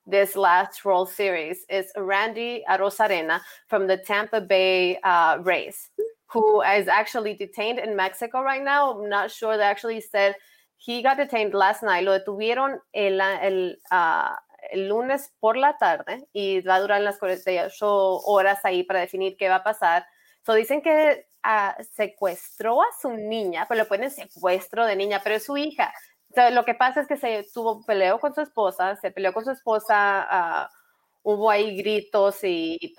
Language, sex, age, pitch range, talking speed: English, female, 20-39, 195-235 Hz, 175 wpm